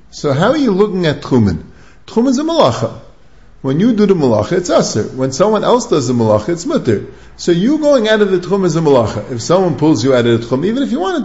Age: 50-69